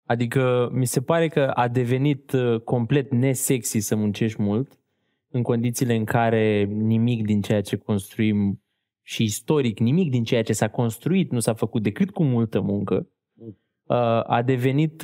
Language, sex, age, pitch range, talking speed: Romanian, male, 20-39, 110-145 Hz, 160 wpm